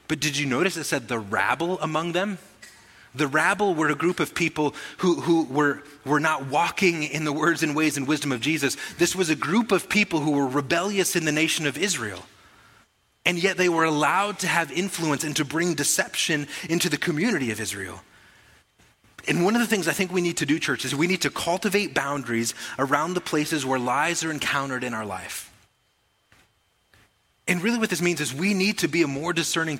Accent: American